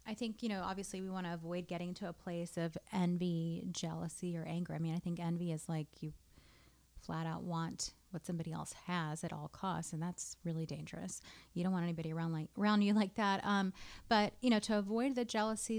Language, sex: English, female